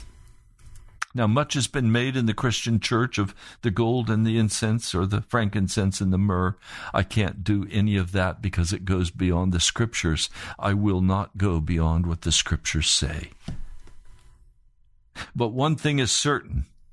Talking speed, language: 165 wpm, English